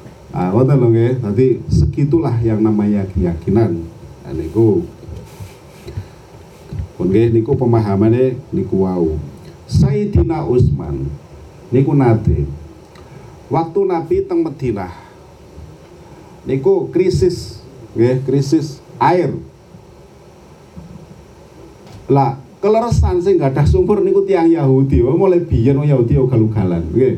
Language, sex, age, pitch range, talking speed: Indonesian, male, 50-69, 115-165 Hz, 105 wpm